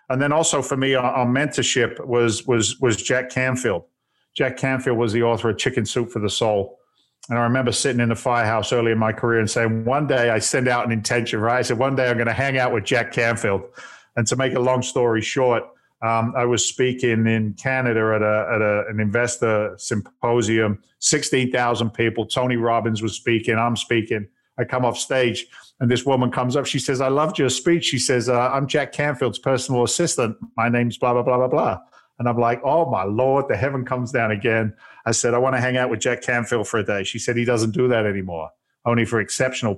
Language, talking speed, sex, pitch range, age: English, 225 wpm, male, 115-130 Hz, 50-69